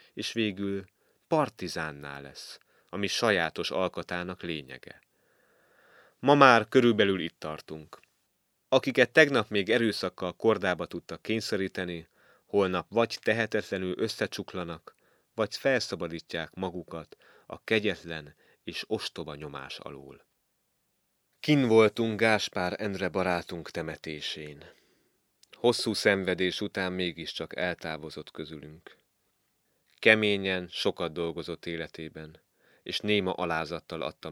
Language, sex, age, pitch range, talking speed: Hungarian, male, 30-49, 80-100 Hz, 95 wpm